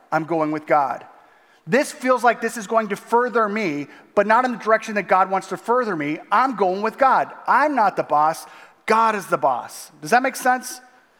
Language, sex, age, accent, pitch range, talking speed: English, male, 30-49, American, 160-225 Hz, 215 wpm